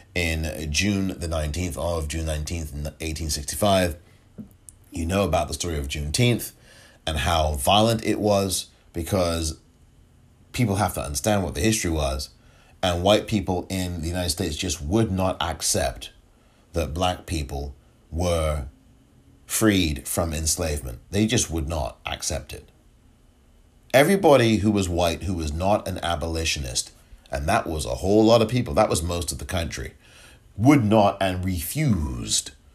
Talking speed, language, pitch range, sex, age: 150 wpm, English, 80-105 Hz, male, 30-49